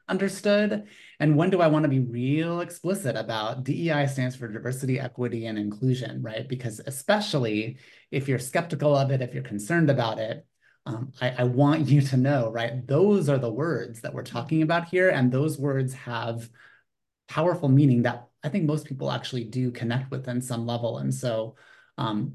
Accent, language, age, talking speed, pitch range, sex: American, English, 30-49, 185 wpm, 125-150 Hz, male